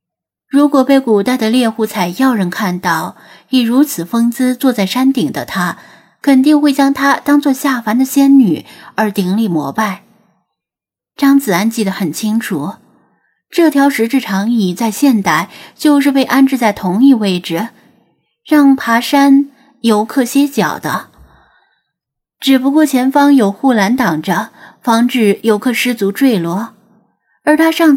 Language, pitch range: Chinese, 205-275 Hz